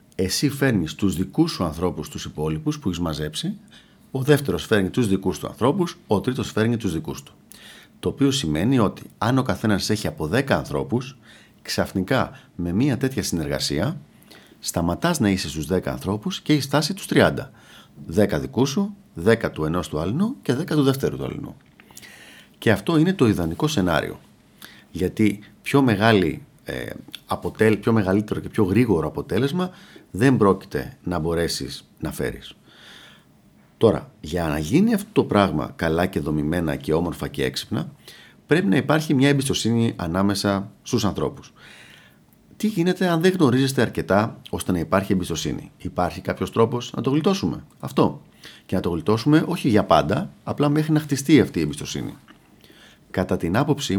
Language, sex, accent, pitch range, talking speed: Greek, male, native, 90-145 Hz, 160 wpm